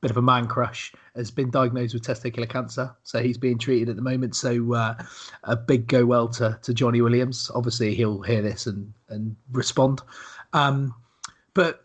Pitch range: 120-155 Hz